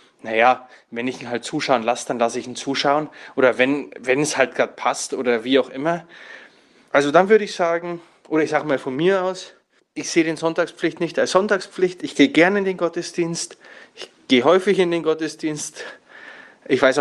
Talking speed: 195 wpm